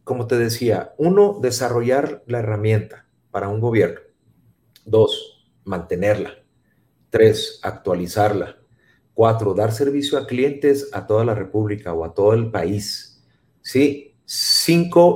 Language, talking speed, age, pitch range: Spanish, 120 wpm, 40-59, 105-135 Hz